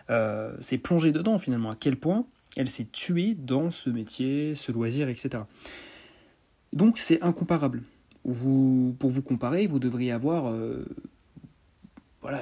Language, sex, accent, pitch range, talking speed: French, male, French, 120-160 Hz, 140 wpm